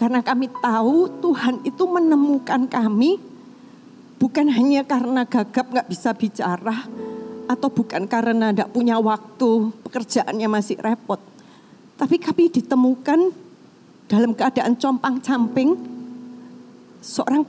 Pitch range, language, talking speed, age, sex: 220-265 Hz, Indonesian, 105 wpm, 30-49, female